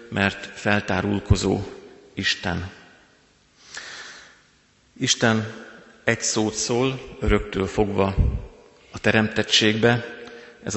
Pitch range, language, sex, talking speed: 100-115 Hz, Hungarian, male, 65 wpm